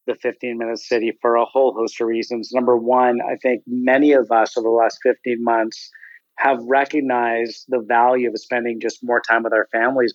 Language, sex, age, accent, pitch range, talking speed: English, male, 40-59, American, 120-145 Hz, 195 wpm